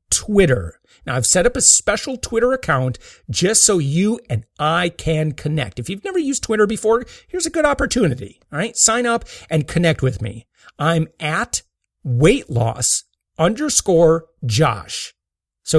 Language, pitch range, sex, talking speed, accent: English, 140-195 Hz, male, 155 wpm, American